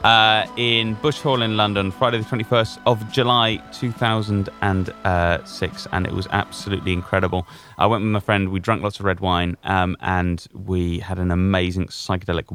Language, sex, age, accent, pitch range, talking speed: English, male, 30-49, British, 90-120 Hz, 165 wpm